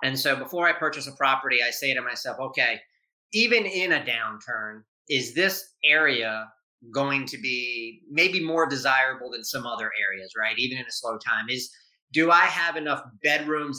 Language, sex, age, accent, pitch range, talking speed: English, male, 30-49, American, 130-160 Hz, 180 wpm